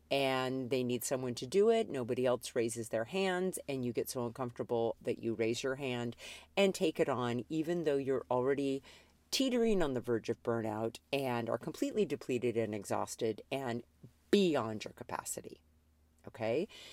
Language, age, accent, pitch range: English, 50-69, American, 115-150 Hz